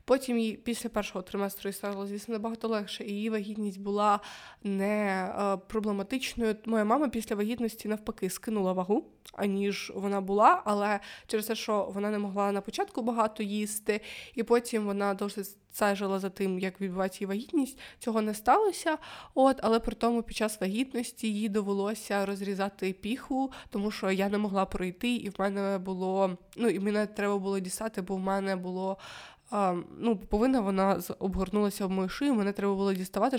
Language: Ukrainian